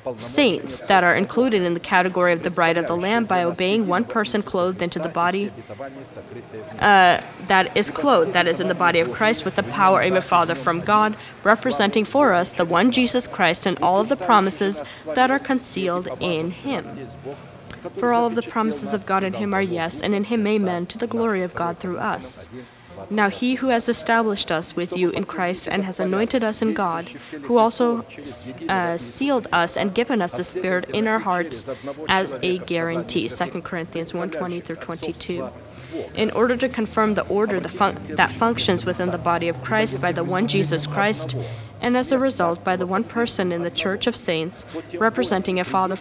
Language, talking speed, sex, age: English, 195 wpm, female, 20-39